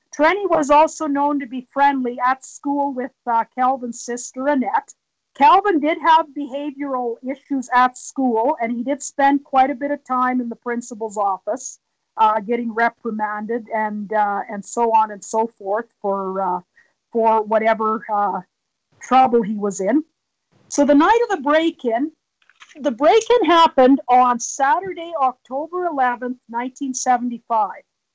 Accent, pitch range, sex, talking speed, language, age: American, 235-305 Hz, female, 145 wpm, English, 50-69